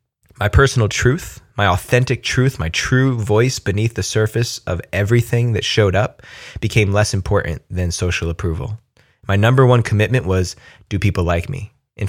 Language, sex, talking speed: English, male, 165 wpm